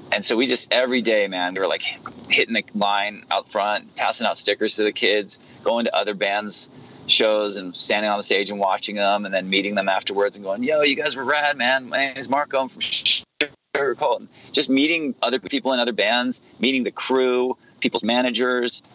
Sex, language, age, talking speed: male, English, 30-49, 200 wpm